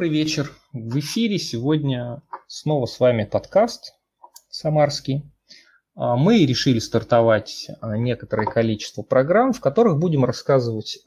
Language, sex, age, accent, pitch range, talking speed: Russian, male, 30-49, native, 110-155 Hz, 110 wpm